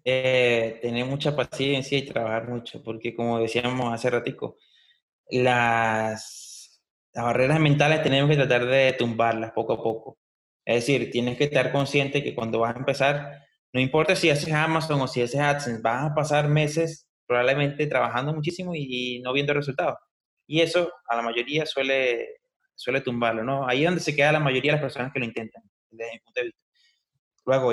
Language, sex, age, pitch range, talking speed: Spanish, male, 20-39, 120-145 Hz, 170 wpm